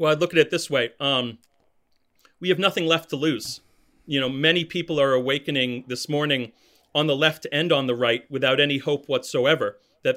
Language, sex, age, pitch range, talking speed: English, male, 40-59, 140-175 Hz, 200 wpm